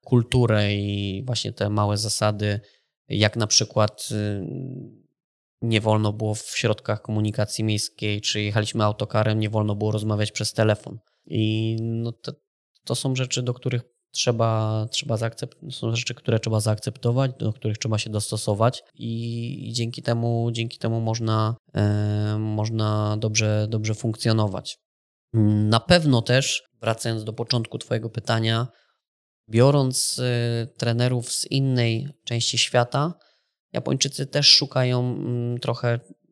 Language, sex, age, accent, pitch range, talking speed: Polish, male, 20-39, native, 110-125 Hz, 130 wpm